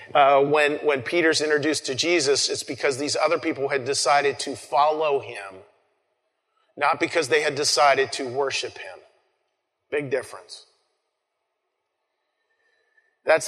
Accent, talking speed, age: American, 125 wpm, 40-59